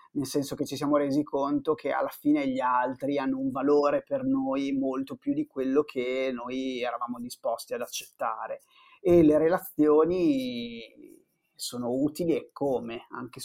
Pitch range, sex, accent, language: 125-155 Hz, male, native, Italian